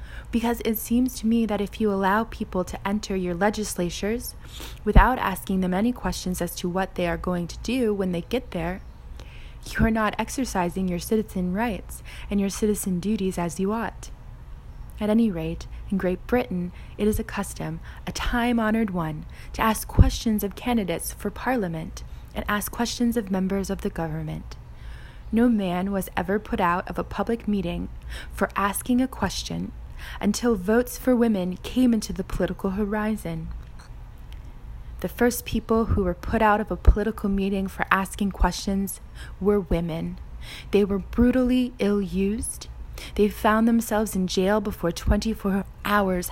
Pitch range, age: 175-215 Hz, 20-39